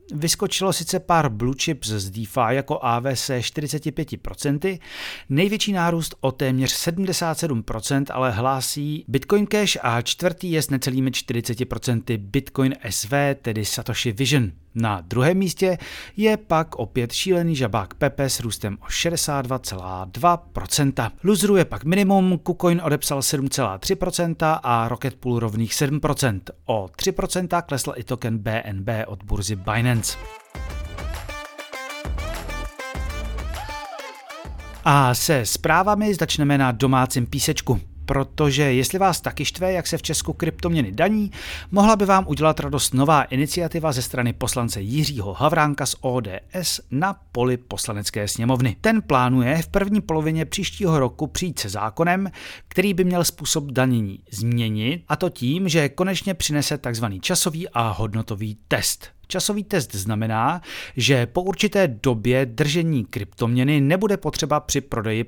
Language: Czech